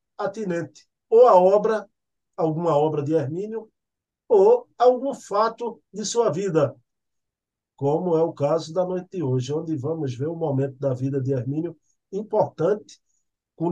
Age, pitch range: 50-69, 150-185 Hz